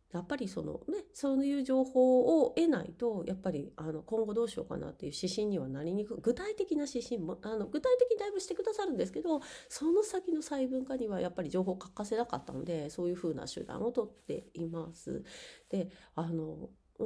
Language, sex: Japanese, female